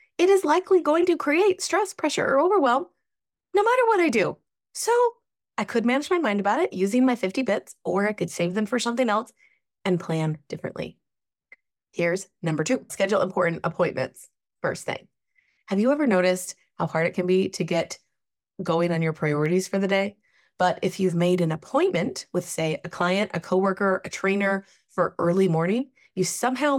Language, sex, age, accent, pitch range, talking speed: English, female, 20-39, American, 185-280 Hz, 185 wpm